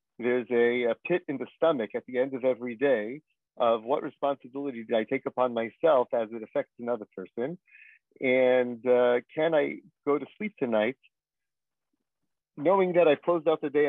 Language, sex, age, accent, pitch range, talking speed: English, male, 40-59, American, 120-150 Hz, 175 wpm